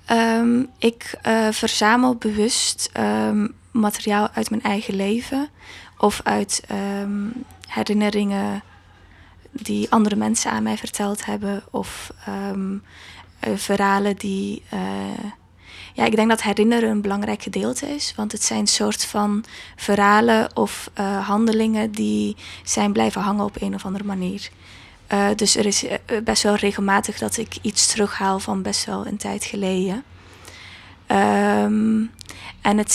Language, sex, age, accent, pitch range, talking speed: Dutch, female, 20-39, Dutch, 190-215 Hz, 130 wpm